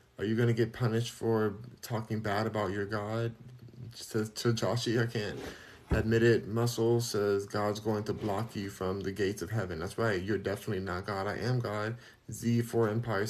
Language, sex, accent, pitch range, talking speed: English, male, American, 100-120 Hz, 190 wpm